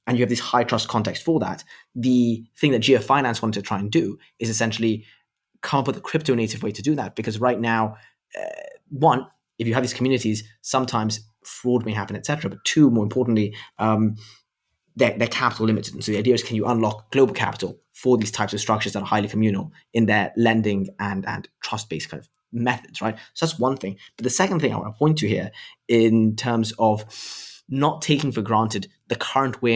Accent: British